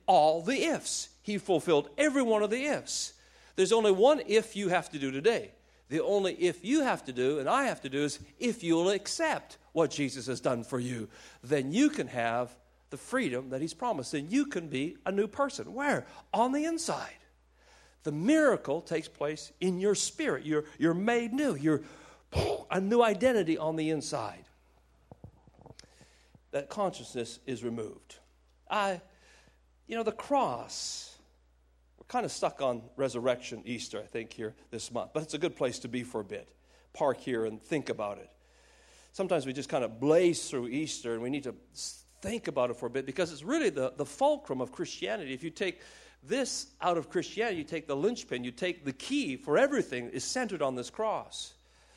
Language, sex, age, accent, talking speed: English, male, 50-69, American, 190 wpm